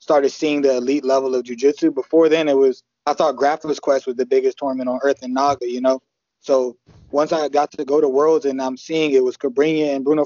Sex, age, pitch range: male, 20-39, 140-160 Hz